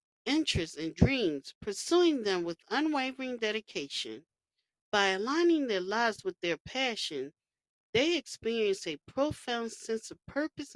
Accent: American